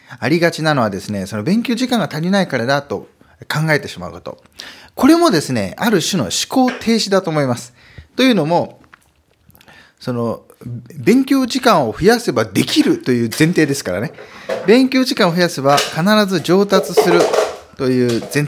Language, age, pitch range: Japanese, 20-39, 110-175 Hz